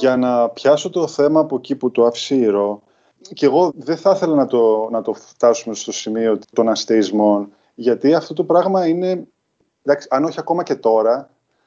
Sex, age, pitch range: male, 20-39, 120-170 Hz